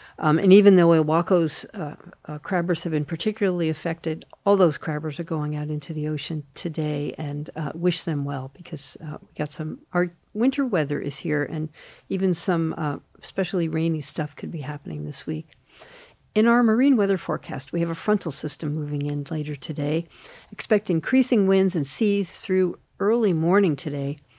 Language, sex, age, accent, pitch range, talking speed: English, female, 50-69, American, 155-195 Hz, 175 wpm